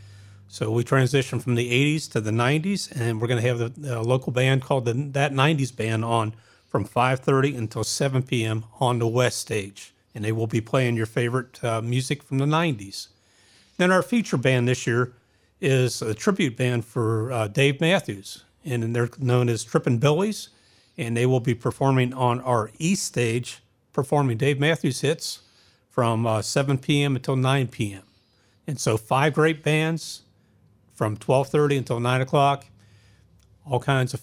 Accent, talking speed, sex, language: American, 170 wpm, male, English